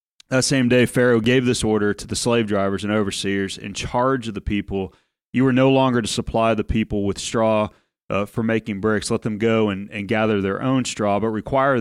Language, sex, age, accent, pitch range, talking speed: English, male, 30-49, American, 100-120 Hz, 220 wpm